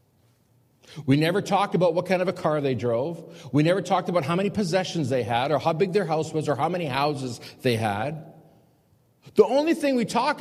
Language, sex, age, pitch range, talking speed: English, male, 50-69, 120-175 Hz, 215 wpm